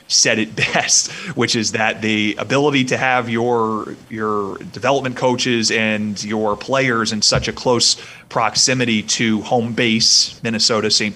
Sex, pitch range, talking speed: male, 110-120 Hz, 145 wpm